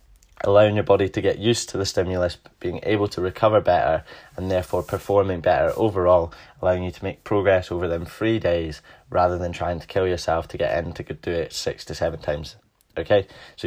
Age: 20-39